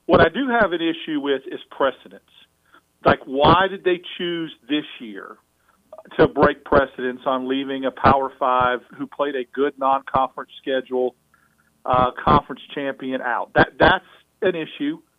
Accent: American